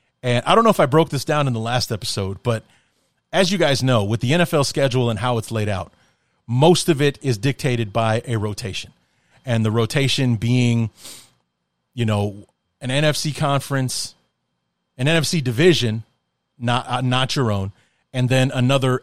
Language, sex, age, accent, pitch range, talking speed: English, male, 30-49, American, 115-145 Hz, 175 wpm